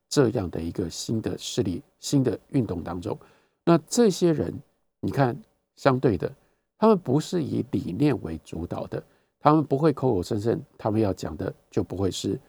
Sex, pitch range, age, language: male, 95-150 Hz, 50-69, Chinese